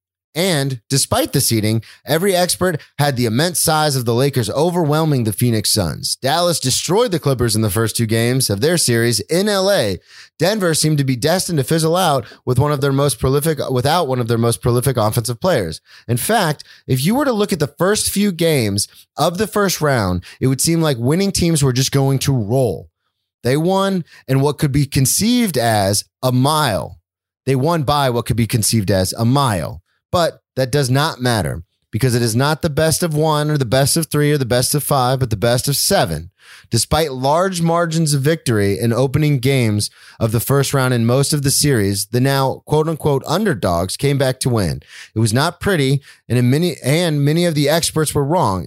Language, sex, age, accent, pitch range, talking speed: English, male, 30-49, American, 120-155 Hz, 205 wpm